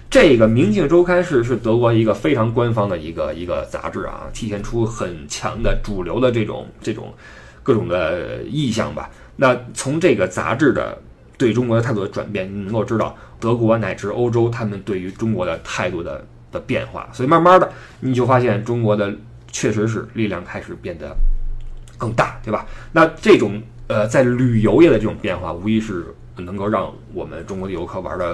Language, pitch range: Chinese, 105-125 Hz